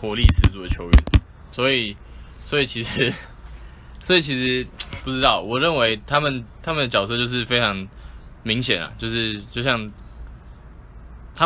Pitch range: 85-115 Hz